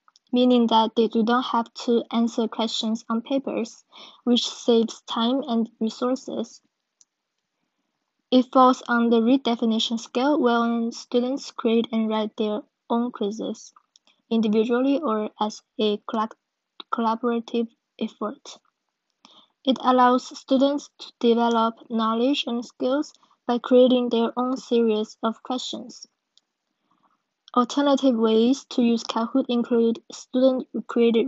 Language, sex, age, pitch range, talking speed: English, female, 20-39, 225-255 Hz, 110 wpm